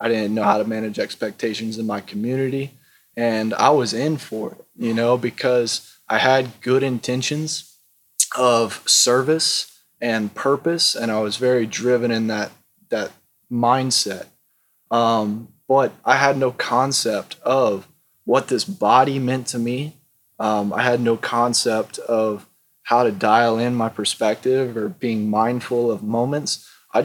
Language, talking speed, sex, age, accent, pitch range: English, 150 wpm, male, 20-39, American, 110-125 Hz